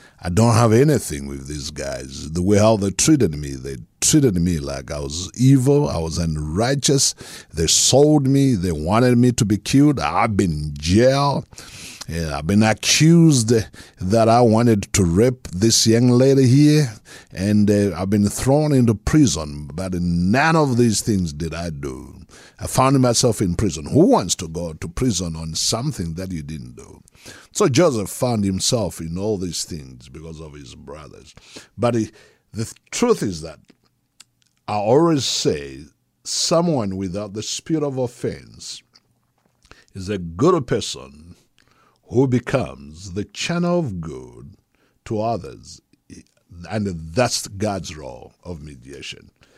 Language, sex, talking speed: English, male, 150 wpm